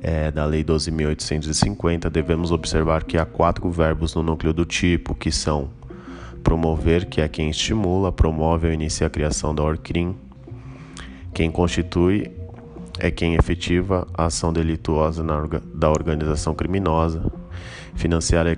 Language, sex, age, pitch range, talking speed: English, male, 20-39, 80-90 Hz, 140 wpm